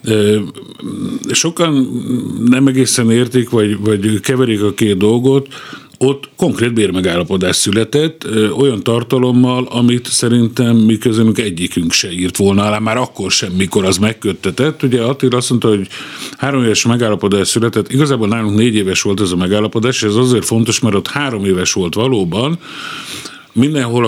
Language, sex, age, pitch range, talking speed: Hungarian, male, 50-69, 95-120 Hz, 145 wpm